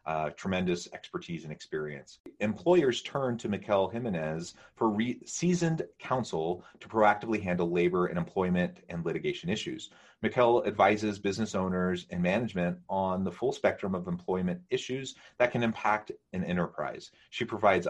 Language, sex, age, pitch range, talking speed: English, male, 30-49, 85-115 Hz, 145 wpm